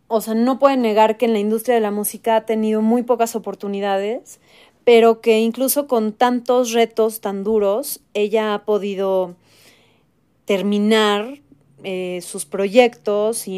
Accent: Mexican